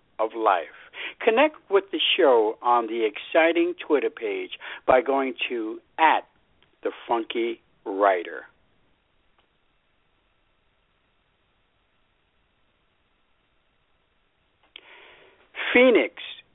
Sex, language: male, English